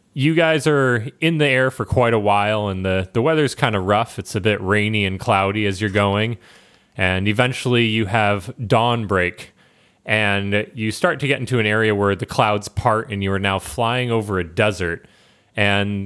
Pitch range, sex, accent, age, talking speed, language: 95-120 Hz, male, American, 30-49, 200 wpm, English